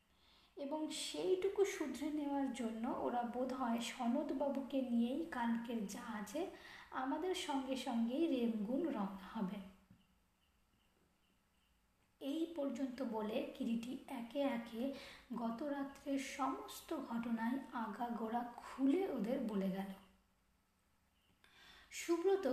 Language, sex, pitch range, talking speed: Bengali, female, 230-290 Hz, 90 wpm